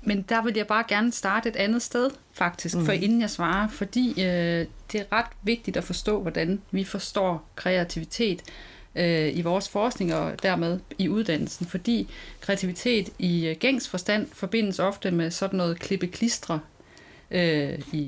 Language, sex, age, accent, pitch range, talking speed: Danish, female, 30-49, native, 175-220 Hz, 150 wpm